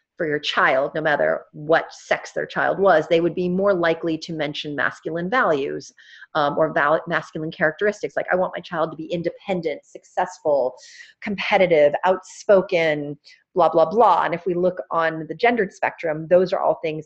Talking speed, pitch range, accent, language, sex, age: 175 wpm, 155-185 Hz, American, English, female, 40-59